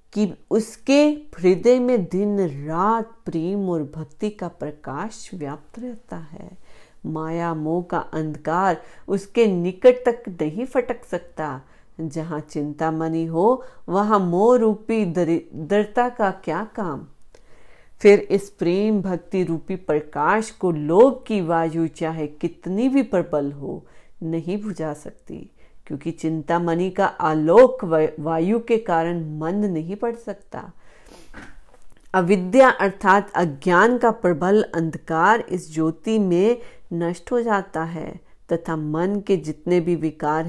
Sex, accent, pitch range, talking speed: female, native, 160-215 Hz, 125 wpm